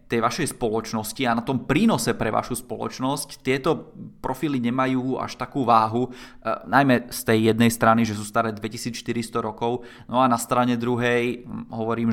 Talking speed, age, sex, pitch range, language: 160 wpm, 20-39, male, 115-145 Hz, Czech